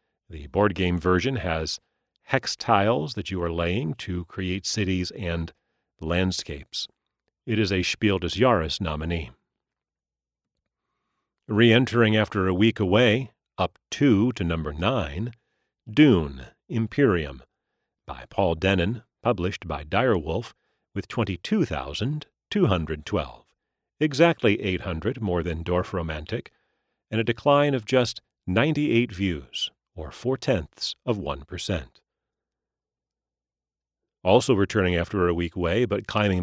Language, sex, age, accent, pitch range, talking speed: English, male, 40-59, American, 85-120 Hz, 110 wpm